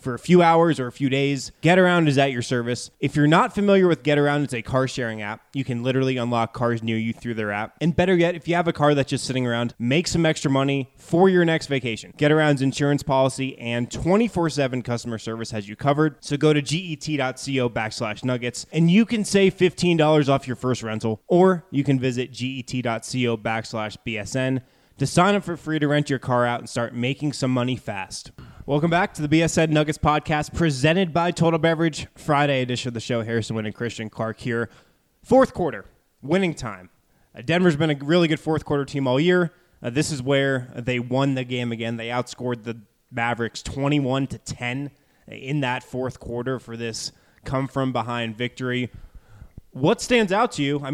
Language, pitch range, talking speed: English, 120-150 Hz, 200 wpm